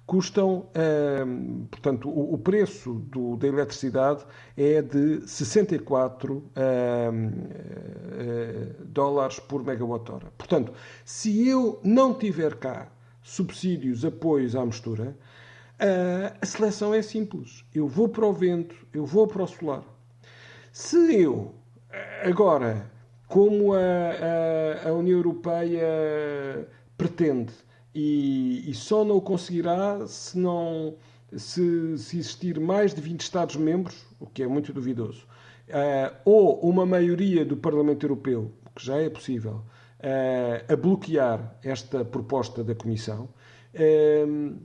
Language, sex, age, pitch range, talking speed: Portuguese, male, 50-69, 125-180 Hz, 115 wpm